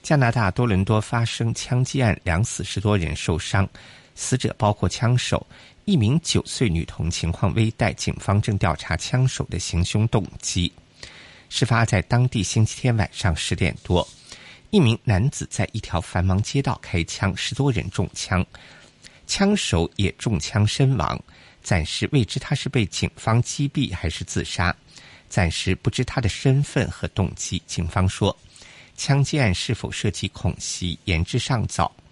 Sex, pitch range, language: male, 90-125 Hz, Chinese